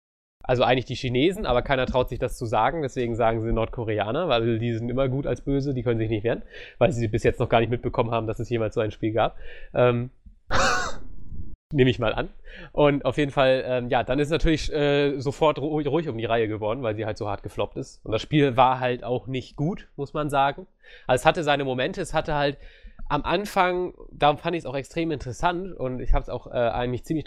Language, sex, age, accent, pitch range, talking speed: English, male, 20-39, German, 120-145 Hz, 240 wpm